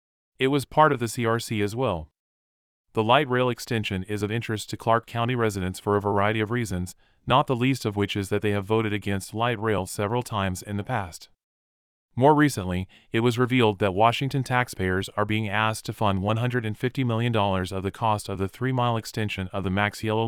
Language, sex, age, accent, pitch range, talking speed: English, male, 30-49, American, 100-120 Hz, 205 wpm